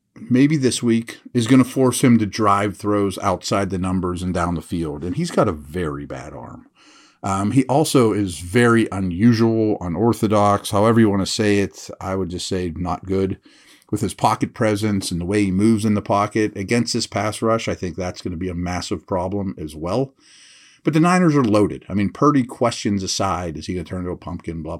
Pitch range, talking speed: 95-120 Hz, 220 wpm